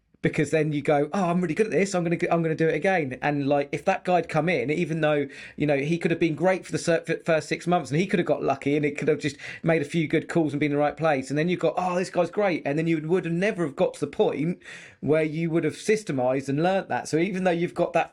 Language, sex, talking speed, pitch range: English, male, 310 wpm, 125-155 Hz